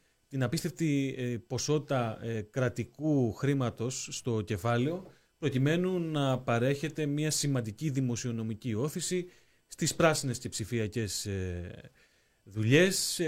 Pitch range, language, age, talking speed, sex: 115-150 Hz, Greek, 30-49, 85 wpm, male